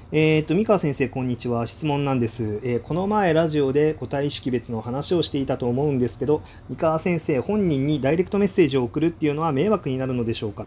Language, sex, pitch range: Japanese, male, 115-165 Hz